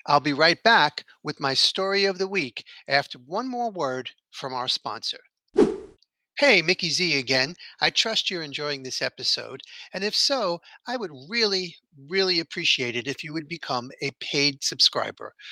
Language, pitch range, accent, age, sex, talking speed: English, 145-200 Hz, American, 50-69, male, 165 wpm